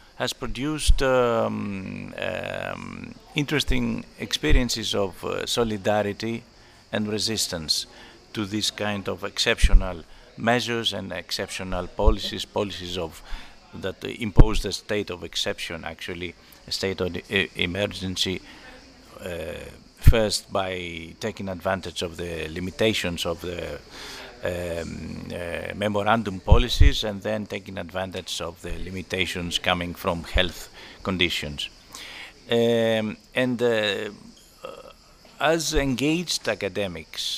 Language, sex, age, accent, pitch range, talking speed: English, male, 50-69, Spanish, 90-115 Hz, 105 wpm